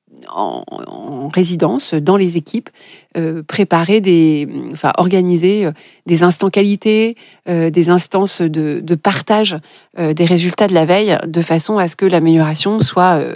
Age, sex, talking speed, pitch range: 30-49, female, 150 wpm, 165-195 Hz